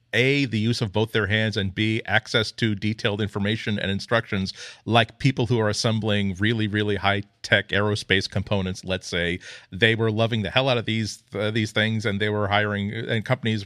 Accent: American